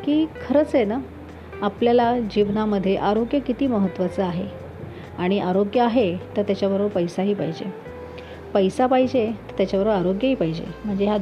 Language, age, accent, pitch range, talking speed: Marathi, 40-59, native, 180-230 Hz, 135 wpm